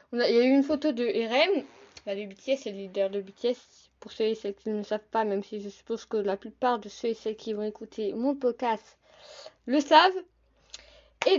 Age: 20-39